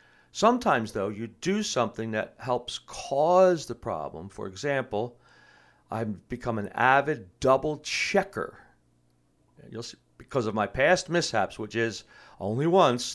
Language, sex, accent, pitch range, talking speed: English, male, American, 100-135 Hz, 120 wpm